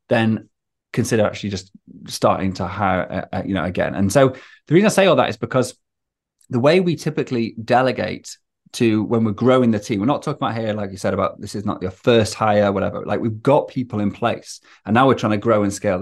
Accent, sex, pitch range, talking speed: British, male, 100-130 Hz, 230 wpm